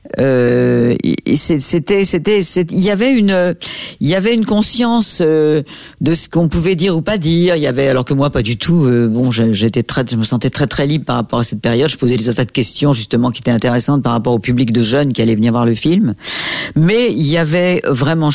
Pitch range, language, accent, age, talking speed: 115-150 Hz, French, French, 50-69, 220 wpm